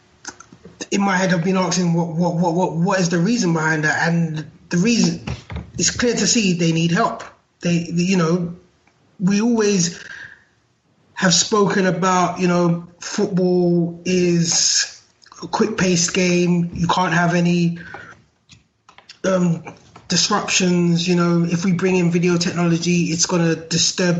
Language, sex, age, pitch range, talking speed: English, male, 20-39, 170-190 Hz, 150 wpm